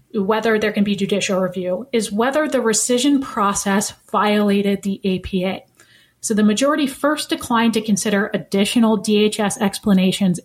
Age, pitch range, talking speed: 30-49, 195-235 Hz, 140 wpm